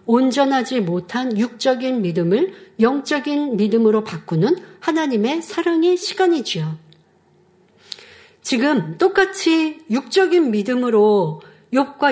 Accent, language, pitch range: native, Korean, 215-320 Hz